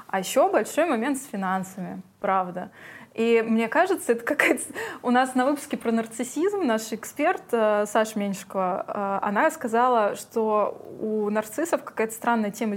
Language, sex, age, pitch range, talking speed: Russian, female, 20-39, 205-250 Hz, 140 wpm